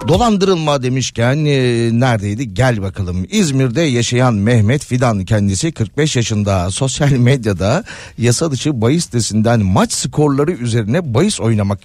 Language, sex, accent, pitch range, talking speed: Turkish, male, native, 110-145 Hz, 115 wpm